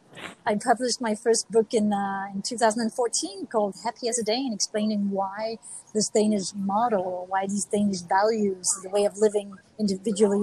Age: 30-49